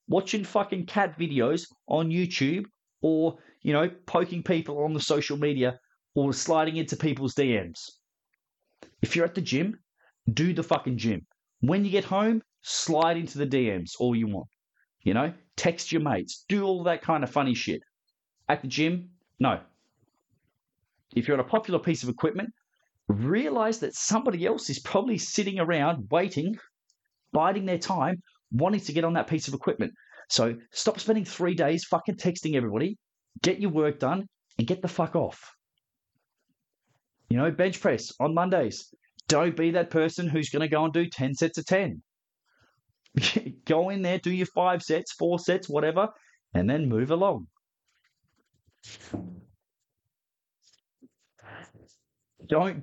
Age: 30-49